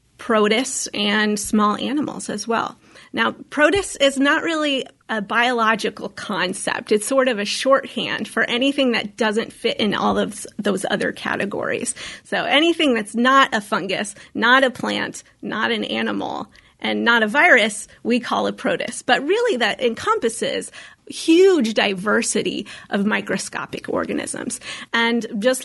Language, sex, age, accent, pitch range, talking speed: English, female, 30-49, American, 215-275 Hz, 145 wpm